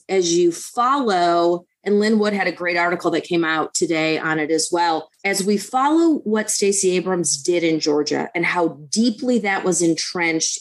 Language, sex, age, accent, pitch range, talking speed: English, female, 30-49, American, 175-220 Hz, 185 wpm